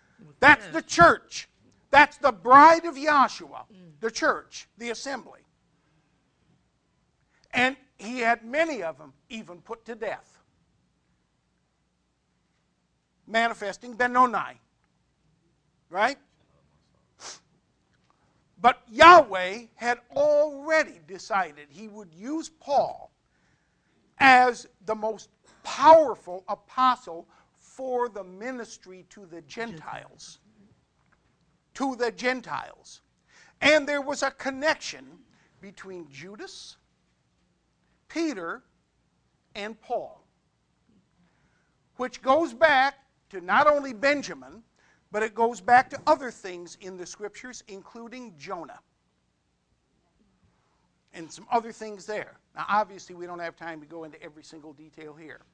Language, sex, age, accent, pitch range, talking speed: English, male, 50-69, American, 185-270 Hz, 105 wpm